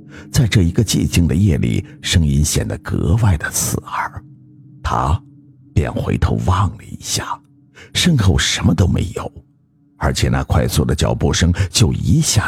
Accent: native